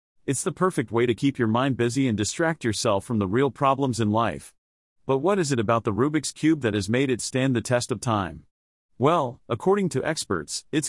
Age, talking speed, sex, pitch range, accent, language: 40-59, 220 wpm, male, 110-150 Hz, American, English